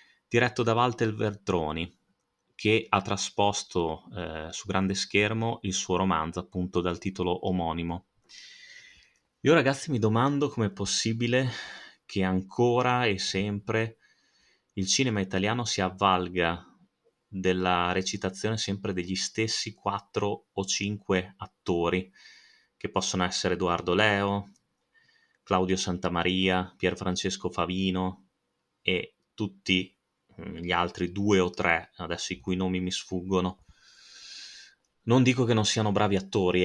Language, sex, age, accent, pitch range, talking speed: Italian, male, 30-49, native, 95-110 Hz, 115 wpm